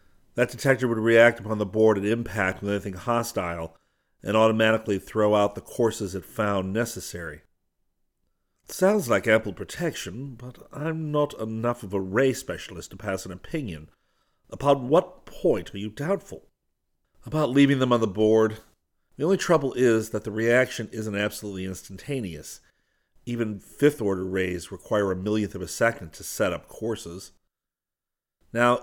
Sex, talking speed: male, 150 wpm